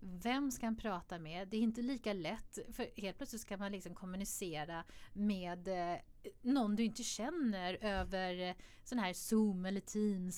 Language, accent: Swedish, native